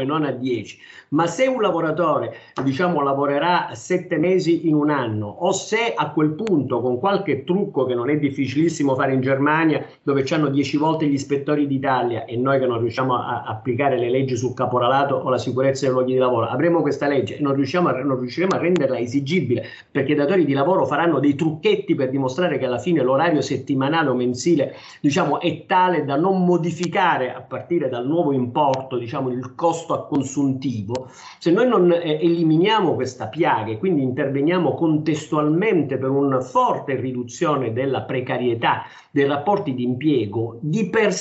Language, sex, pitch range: Italian, male, 130-170 Hz